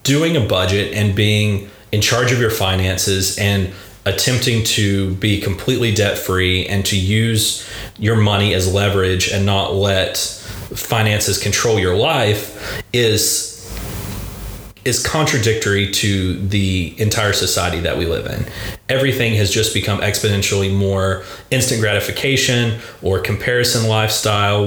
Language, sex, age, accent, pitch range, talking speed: English, male, 30-49, American, 100-110 Hz, 125 wpm